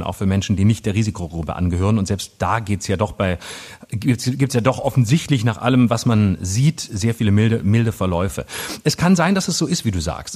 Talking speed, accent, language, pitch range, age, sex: 220 wpm, German, German, 115-150 Hz, 40-59, male